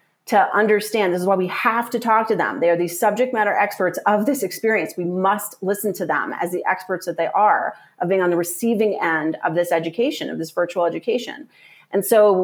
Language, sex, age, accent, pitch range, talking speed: English, female, 30-49, American, 175-220 Hz, 220 wpm